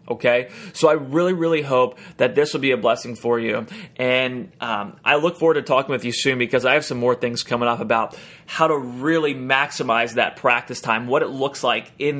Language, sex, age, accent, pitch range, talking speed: English, male, 30-49, American, 120-150 Hz, 220 wpm